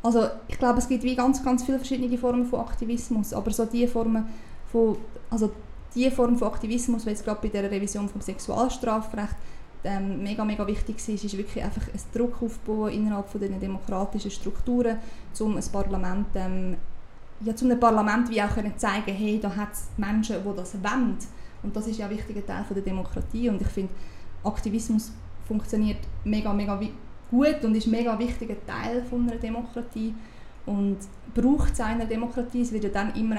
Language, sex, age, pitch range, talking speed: German, female, 20-39, 210-240 Hz, 180 wpm